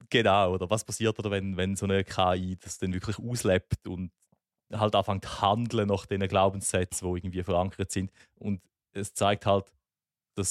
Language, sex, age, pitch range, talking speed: German, male, 30-49, 95-110 Hz, 170 wpm